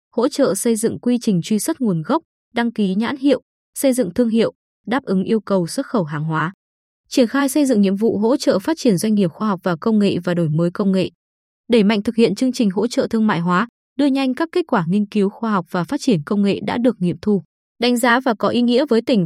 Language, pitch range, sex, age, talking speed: Vietnamese, 195-250 Hz, female, 20-39, 265 wpm